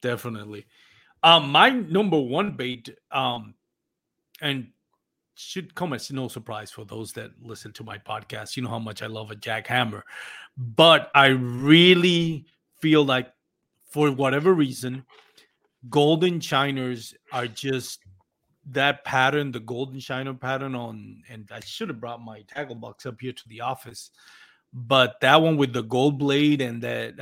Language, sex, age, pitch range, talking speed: English, male, 30-49, 120-150 Hz, 150 wpm